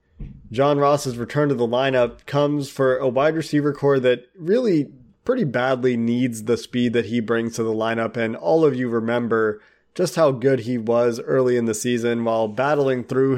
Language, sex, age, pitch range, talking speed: English, male, 30-49, 120-140 Hz, 190 wpm